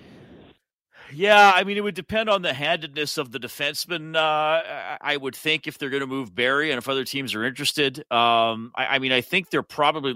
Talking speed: 215 wpm